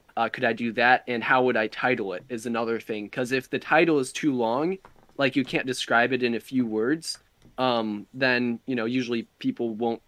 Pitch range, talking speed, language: 115-140 Hz, 220 wpm, English